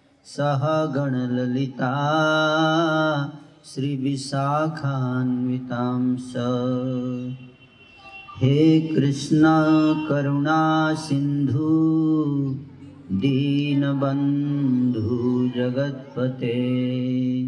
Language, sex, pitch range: Hindi, male, 125-160 Hz